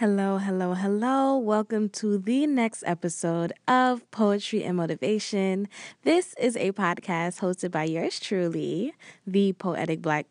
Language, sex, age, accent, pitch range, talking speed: English, female, 20-39, American, 175-210 Hz, 135 wpm